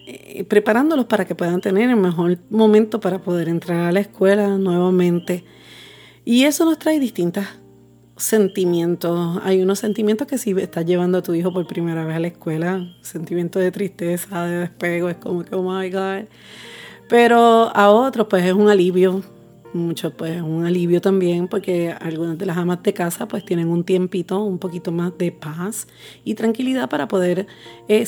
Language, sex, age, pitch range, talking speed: Spanish, female, 30-49, 175-210 Hz, 175 wpm